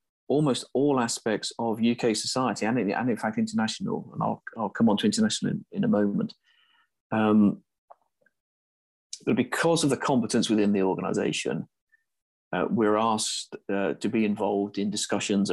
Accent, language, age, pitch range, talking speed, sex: British, English, 30-49, 100-115 Hz, 150 wpm, male